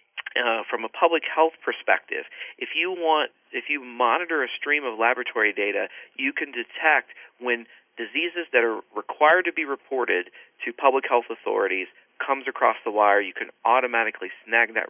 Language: English